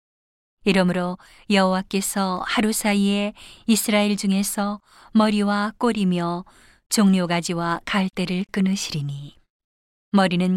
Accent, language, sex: native, Korean, female